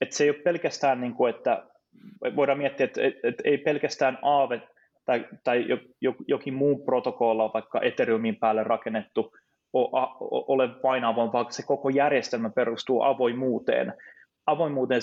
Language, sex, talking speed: Finnish, male, 120 wpm